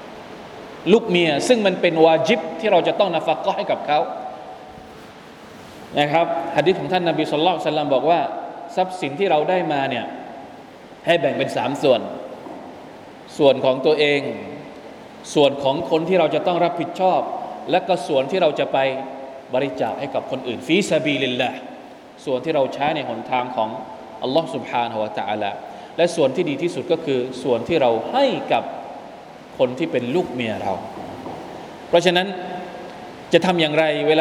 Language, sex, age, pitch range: Thai, male, 20-39, 155-200 Hz